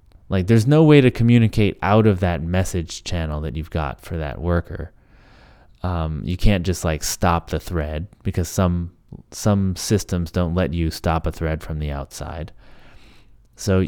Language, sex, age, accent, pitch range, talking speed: English, male, 20-39, American, 85-105 Hz, 170 wpm